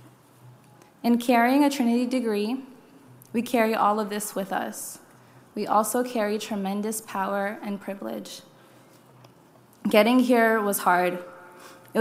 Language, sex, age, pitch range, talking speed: English, female, 20-39, 200-230 Hz, 120 wpm